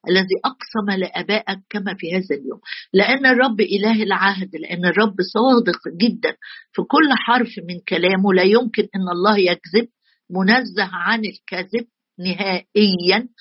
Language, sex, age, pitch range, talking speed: Arabic, female, 50-69, 190-235 Hz, 130 wpm